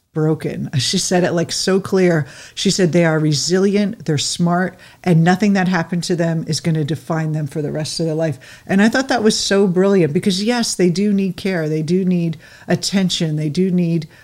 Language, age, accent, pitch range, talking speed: English, 50-69, American, 155-180 Hz, 215 wpm